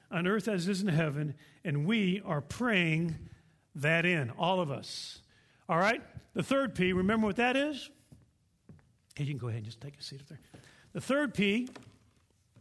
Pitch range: 170-225 Hz